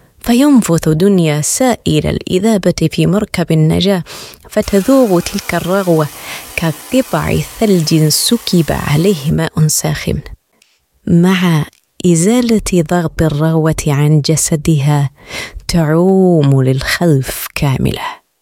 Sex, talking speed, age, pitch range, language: female, 80 wpm, 30-49, 150-180 Hz, Arabic